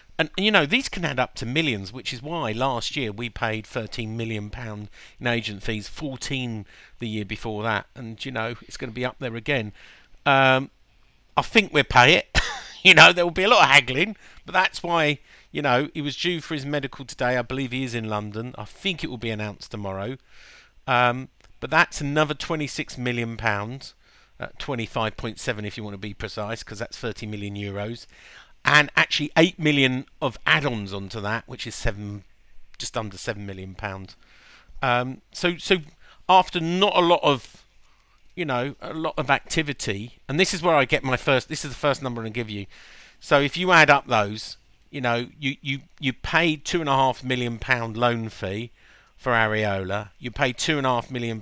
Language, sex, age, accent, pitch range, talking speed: English, male, 50-69, British, 110-145 Hz, 205 wpm